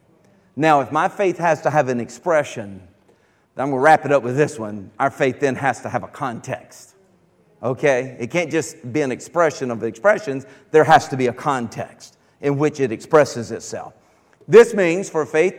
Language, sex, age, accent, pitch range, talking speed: English, male, 50-69, American, 155-220 Hz, 195 wpm